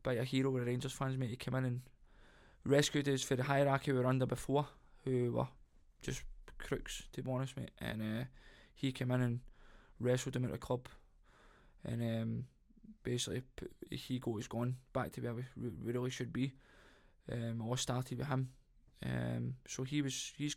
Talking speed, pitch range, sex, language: 185 wpm, 125-140 Hz, male, English